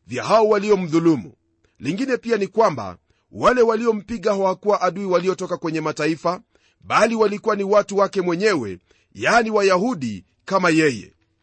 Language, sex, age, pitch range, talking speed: Swahili, male, 40-59, 145-205 Hz, 135 wpm